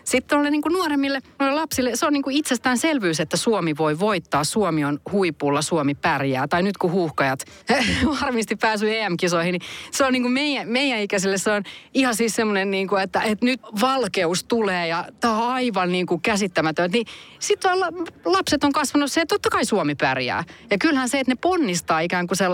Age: 30-49